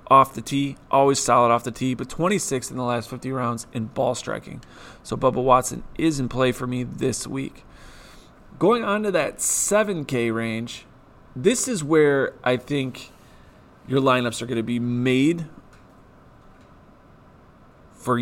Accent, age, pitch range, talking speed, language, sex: American, 30-49, 120-145 Hz, 155 wpm, English, male